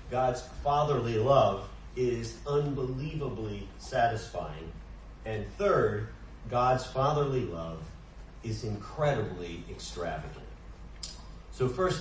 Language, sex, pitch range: English, male, 95-145 Hz